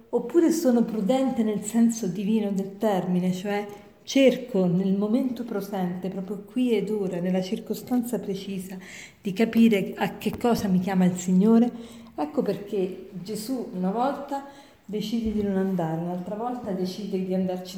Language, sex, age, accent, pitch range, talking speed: Italian, female, 40-59, native, 195-255 Hz, 145 wpm